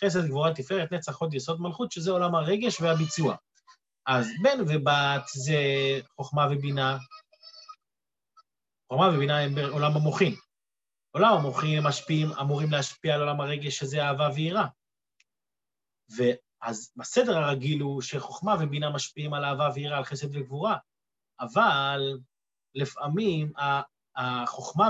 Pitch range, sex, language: 140-195 Hz, male, Hebrew